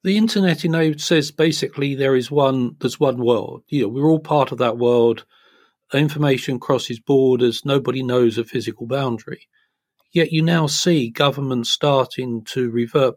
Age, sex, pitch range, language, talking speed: 40-59, male, 125-155 Hz, English, 165 wpm